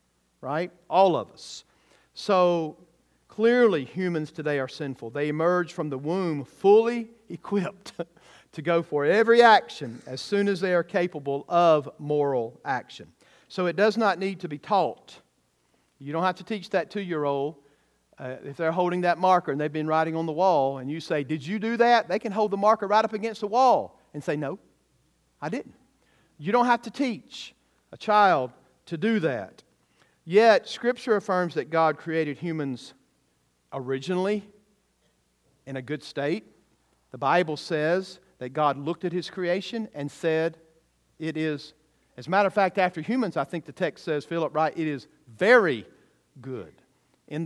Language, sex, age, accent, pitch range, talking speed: English, male, 50-69, American, 145-190 Hz, 170 wpm